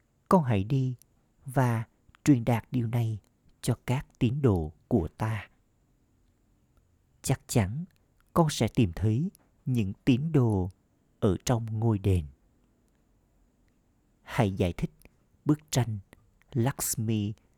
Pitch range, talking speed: 100-130 Hz, 115 wpm